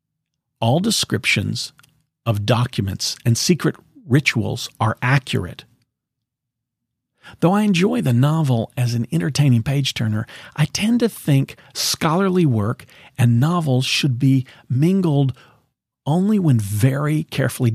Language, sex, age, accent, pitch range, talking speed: English, male, 50-69, American, 115-150 Hz, 110 wpm